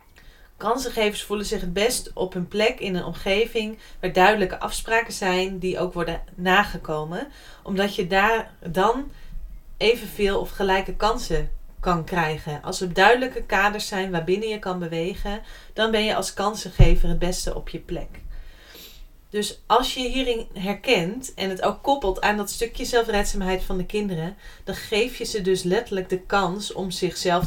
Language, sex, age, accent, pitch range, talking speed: Dutch, female, 30-49, Dutch, 180-215 Hz, 160 wpm